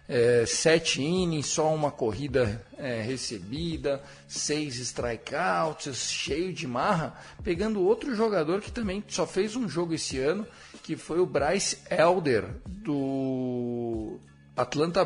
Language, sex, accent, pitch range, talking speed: Portuguese, male, Brazilian, 125-160 Hz, 115 wpm